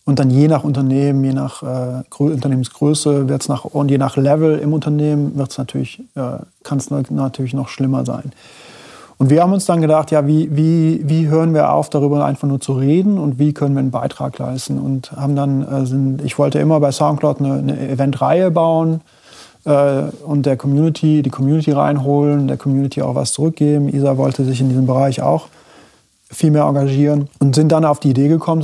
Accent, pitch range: German, 135-150 Hz